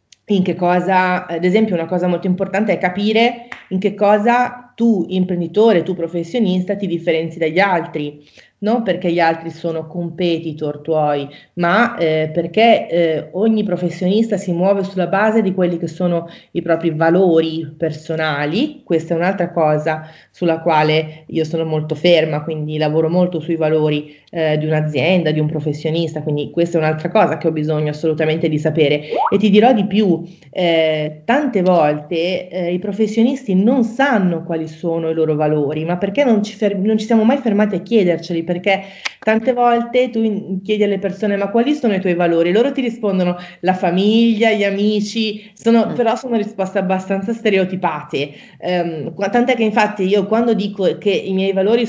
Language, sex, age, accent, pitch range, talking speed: Italian, female, 30-49, native, 165-210 Hz, 165 wpm